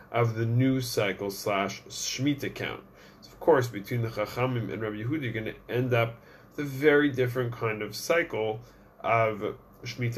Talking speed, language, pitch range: 175 wpm, English, 110-135 Hz